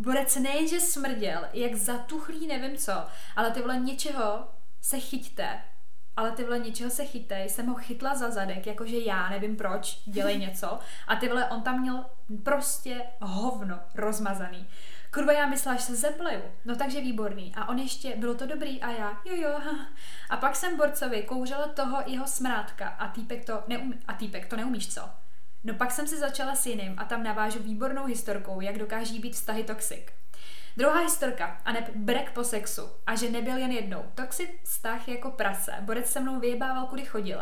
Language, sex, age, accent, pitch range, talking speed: Czech, female, 20-39, native, 215-255 Hz, 180 wpm